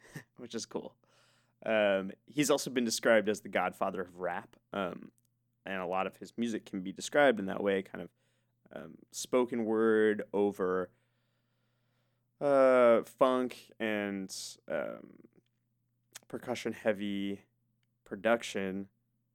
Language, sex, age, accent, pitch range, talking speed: English, male, 20-39, American, 105-120 Hz, 120 wpm